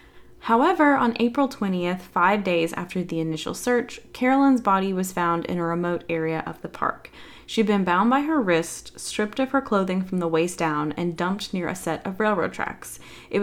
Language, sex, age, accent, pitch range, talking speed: English, female, 20-39, American, 175-235 Hz, 195 wpm